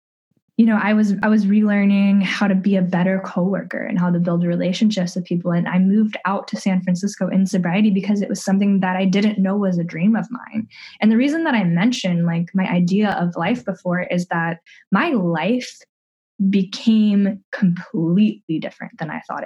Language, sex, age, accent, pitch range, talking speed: English, female, 10-29, American, 180-210 Hz, 195 wpm